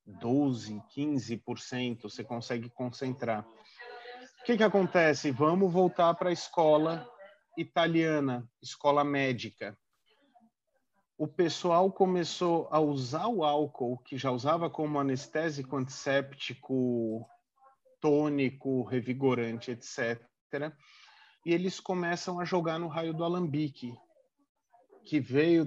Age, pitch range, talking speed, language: 40-59, 130-170 Hz, 105 wpm, Portuguese